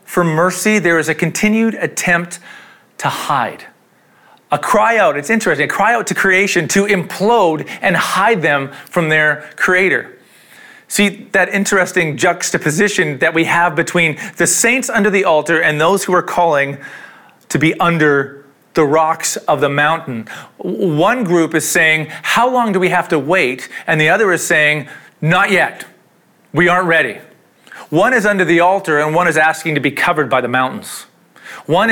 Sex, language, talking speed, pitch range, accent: male, English, 170 wpm, 150-185 Hz, American